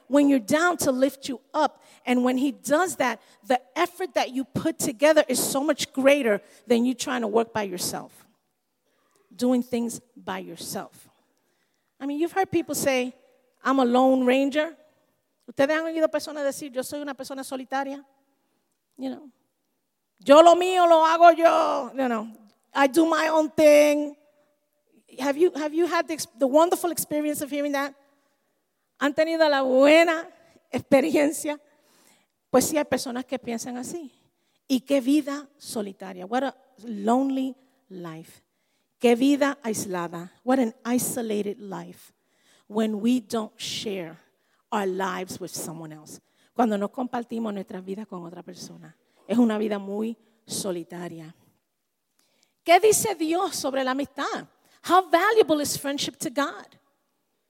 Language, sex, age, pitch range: English, female, 40-59, 230-295 Hz